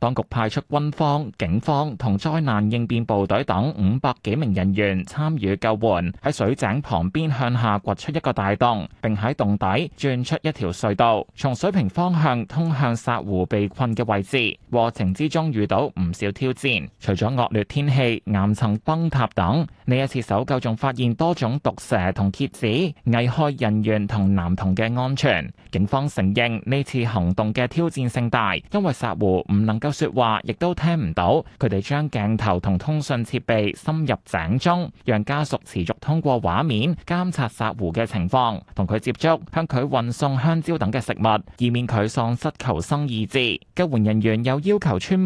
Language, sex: Chinese, male